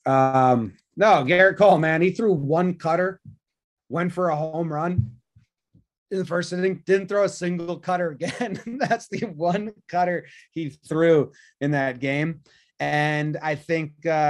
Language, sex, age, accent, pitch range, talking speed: English, male, 30-49, American, 130-175 Hz, 150 wpm